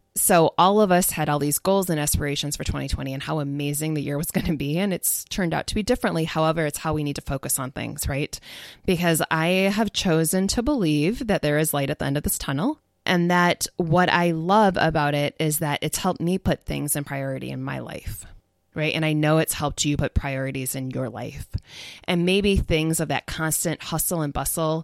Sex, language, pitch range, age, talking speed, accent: female, English, 145-180 Hz, 20-39, 225 wpm, American